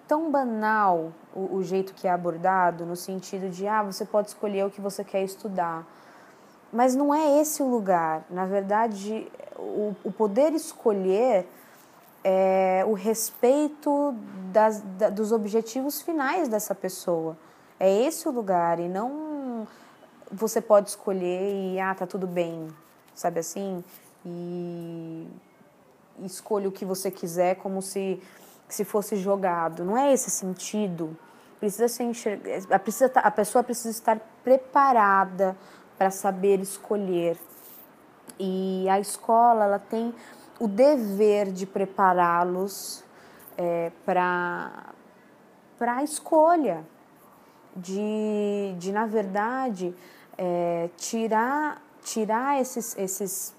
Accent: Brazilian